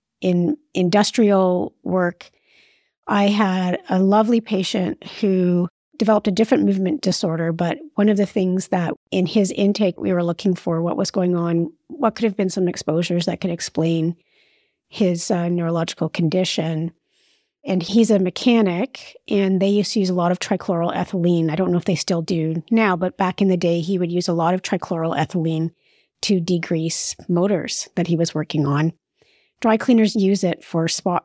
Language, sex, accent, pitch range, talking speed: English, female, American, 170-210 Hz, 175 wpm